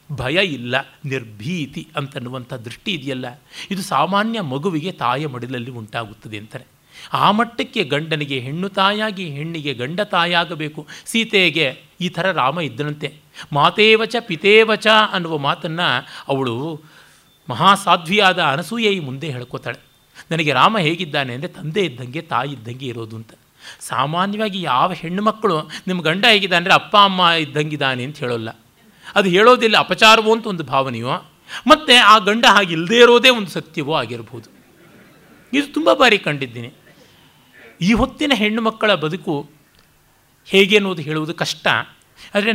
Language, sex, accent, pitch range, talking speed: Kannada, male, native, 135-200 Hz, 125 wpm